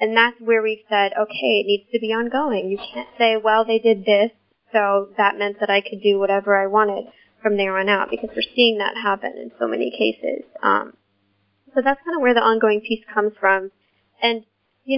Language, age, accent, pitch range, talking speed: English, 20-39, American, 200-230 Hz, 215 wpm